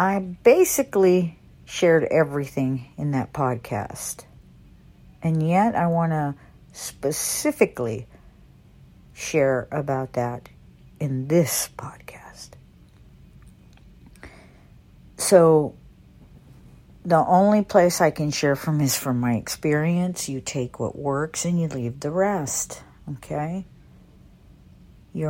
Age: 60-79